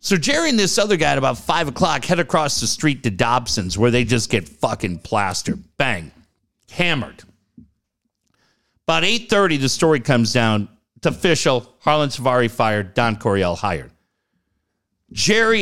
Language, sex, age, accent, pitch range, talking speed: English, male, 50-69, American, 115-165 Hz, 150 wpm